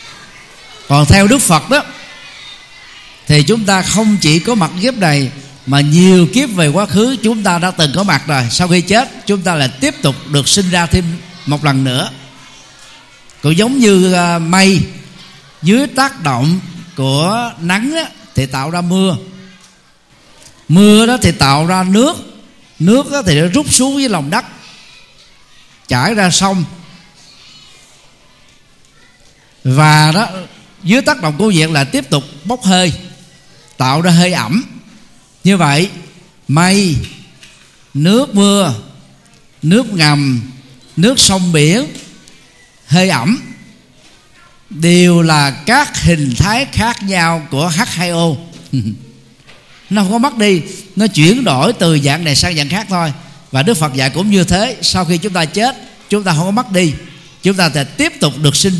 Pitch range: 145-200 Hz